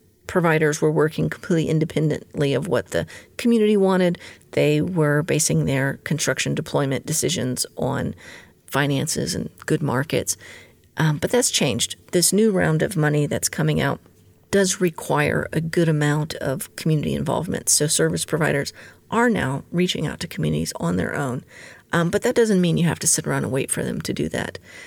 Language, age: English, 40-59